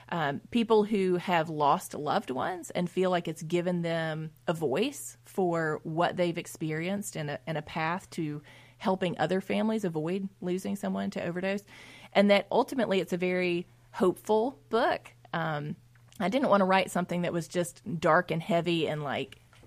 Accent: American